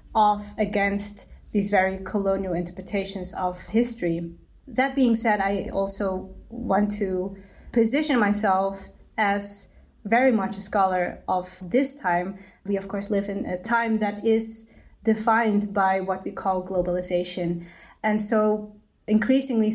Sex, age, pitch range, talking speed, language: female, 20-39, 195-225 Hz, 130 wpm, English